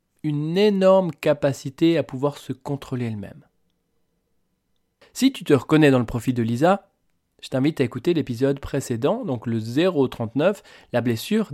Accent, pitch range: French, 125-155 Hz